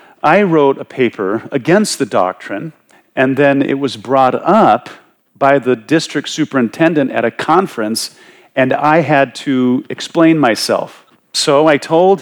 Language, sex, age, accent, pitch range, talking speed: English, male, 40-59, American, 115-145 Hz, 140 wpm